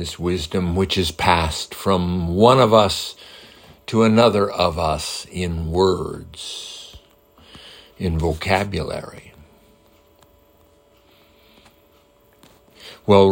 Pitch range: 85-125 Hz